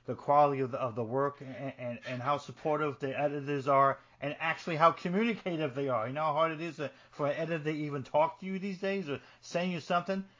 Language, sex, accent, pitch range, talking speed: English, male, American, 125-155 Hz, 225 wpm